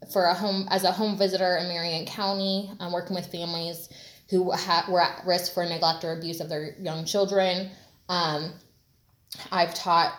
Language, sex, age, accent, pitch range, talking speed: English, female, 20-39, American, 165-200 Hz, 185 wpm